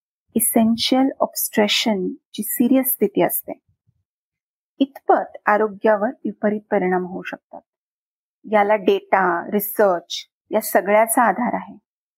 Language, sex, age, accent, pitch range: Marathi, female, 30-49, native, 205-250 Hz